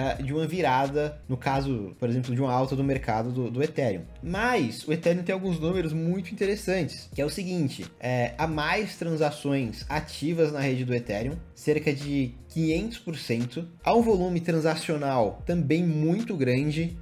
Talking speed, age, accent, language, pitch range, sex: 160 wpm, 20-39, Brazilian, Portuguese, 135-180 Hz, male